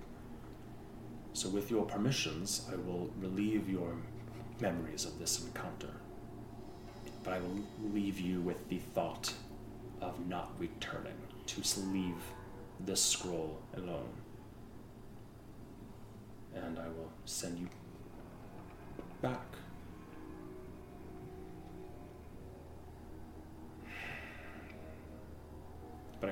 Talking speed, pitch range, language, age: 80 wpm, 75-100 Hz, English, 30-49